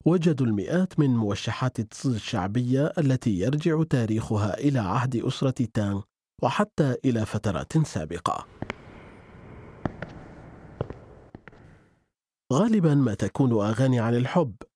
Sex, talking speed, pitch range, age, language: male, 90 wpm, 115-150 Hz, 40-59, Arabic